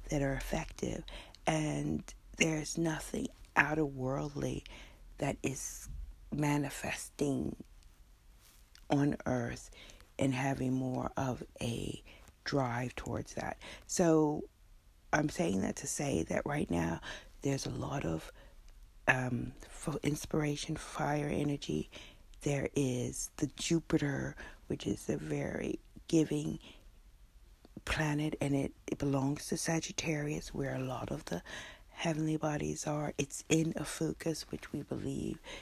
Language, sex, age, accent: English, female, 50-69, American